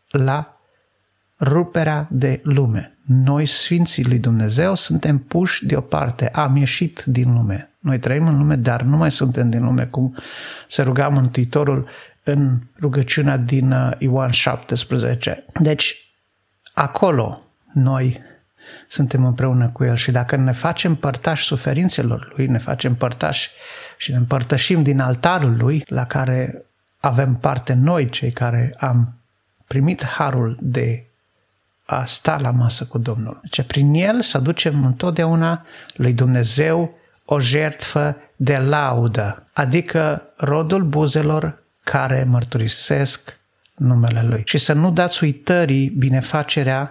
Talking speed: 130 wpm